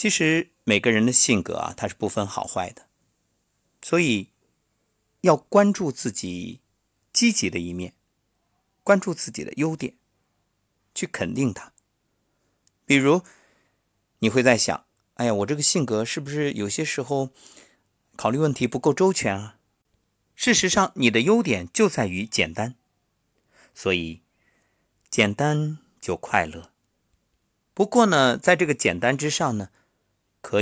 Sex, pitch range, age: male, 100-150 Hz, 50-69